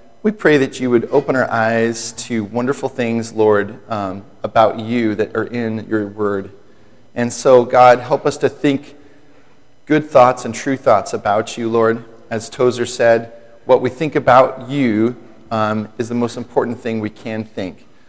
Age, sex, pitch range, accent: 40-59, male, 115-145 Hz, American